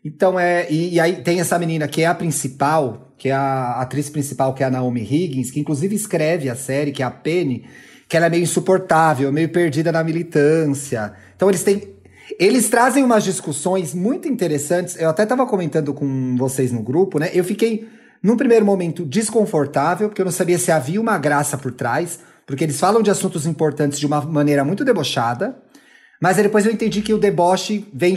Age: 30-49